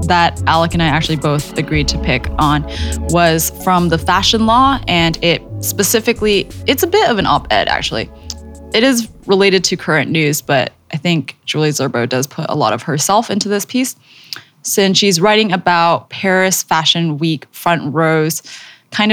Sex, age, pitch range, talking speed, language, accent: female, 10-29, 155-185 Hz, 175 wpm, English, American